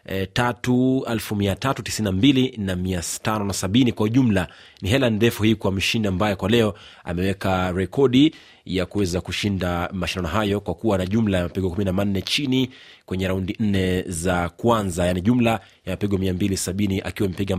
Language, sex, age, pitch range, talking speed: Swahili, male, 30-49, 95-115 Hz, 150 wpm